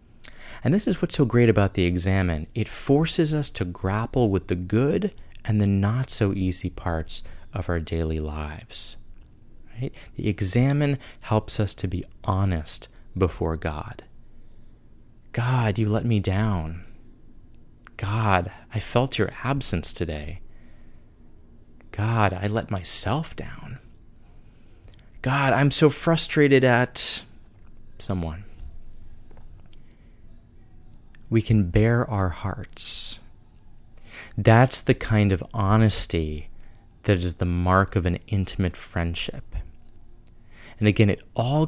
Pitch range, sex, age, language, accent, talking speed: 90-115 Hz, male, 30-49, English, American, 115 wpm